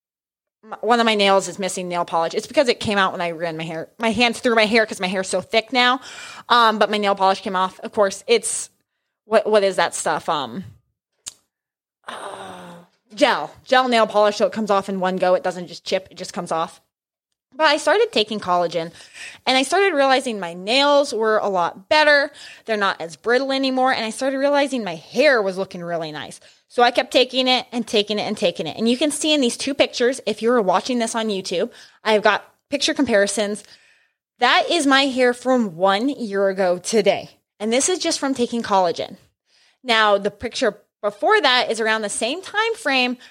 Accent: American